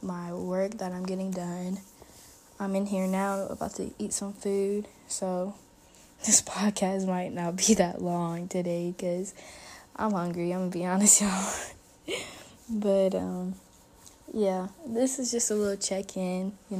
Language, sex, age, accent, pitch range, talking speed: English, female, 10-29, American, 180-200 Hz, 155 wpm